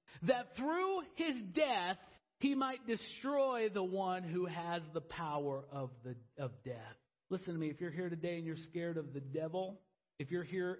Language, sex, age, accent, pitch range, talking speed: English, male, 40-59, American, 160-235 Hz, 185 wpm